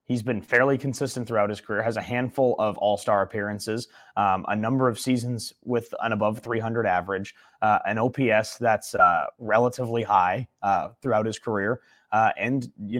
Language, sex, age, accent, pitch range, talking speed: English, male, 20-39, American, 100-120 Hz, 170 wpm